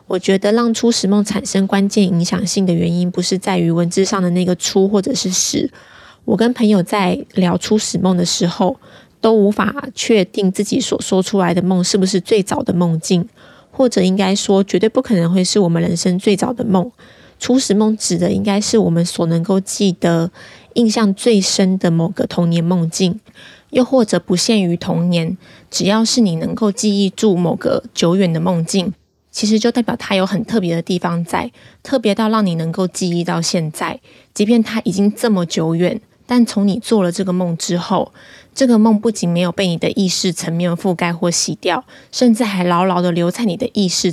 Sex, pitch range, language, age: female, 180-215 Hz, Chinese, 20-39